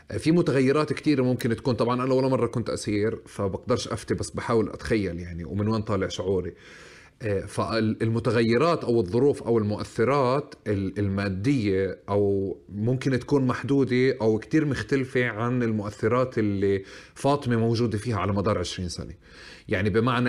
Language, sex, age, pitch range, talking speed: Arabic, male, 30-49, 105-130 Hz, 135 wpm